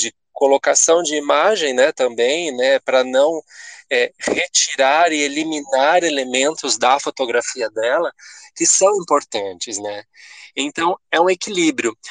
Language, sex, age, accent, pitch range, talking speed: Portuguese, male, 20-39, Brazilian, 120-180 Hz, 115 wpm